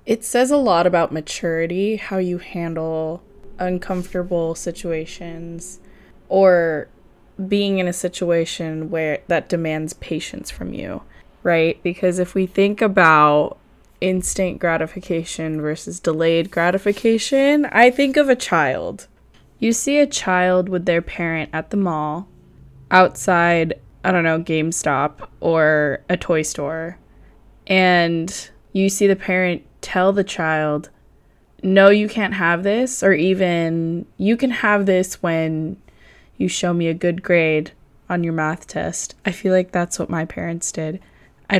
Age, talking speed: 10-29, 140 wpm